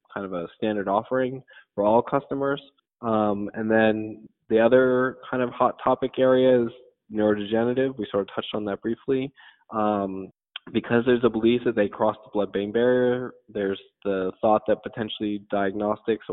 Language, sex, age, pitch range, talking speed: English, male, 20-39, 100-120 Hz, 160 wpm